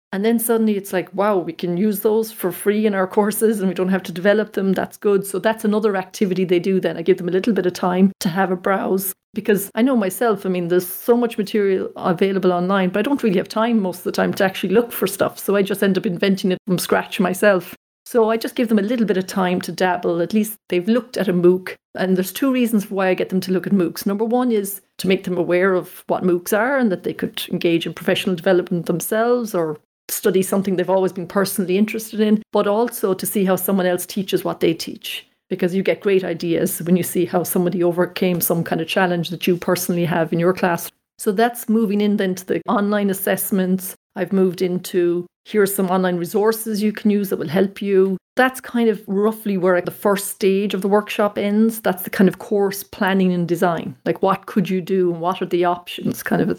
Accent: Irish